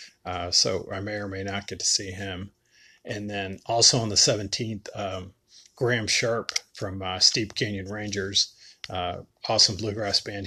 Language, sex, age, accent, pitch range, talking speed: English, male, 40-59, American, 100-120 Hz, 165 wpm